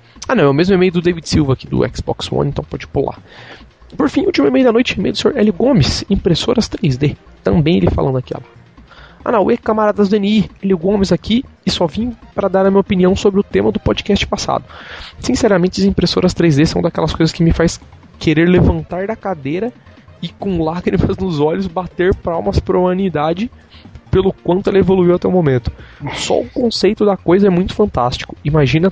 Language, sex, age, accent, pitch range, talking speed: Portuguese, male, 20-39, Brazilian, 155-195 Hz, 200 wpm